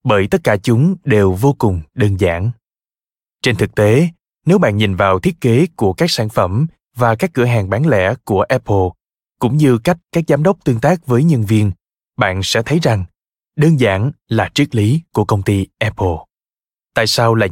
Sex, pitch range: male, 105-145 Hz